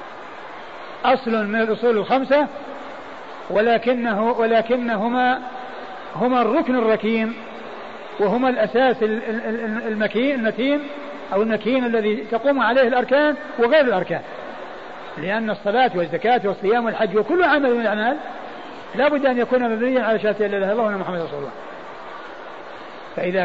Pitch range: 215-255 Hz